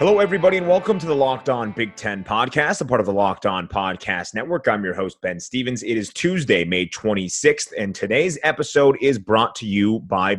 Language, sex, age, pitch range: English, male, 30-49, 105-135 Hz